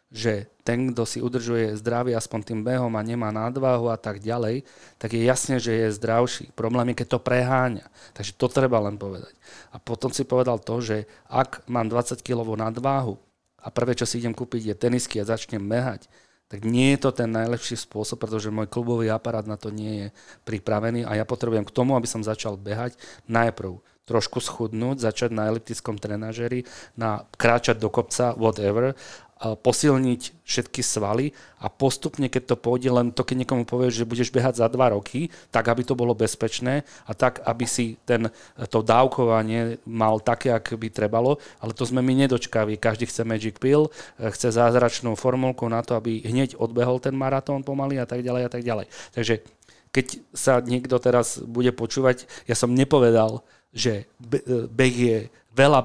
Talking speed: 180 wpm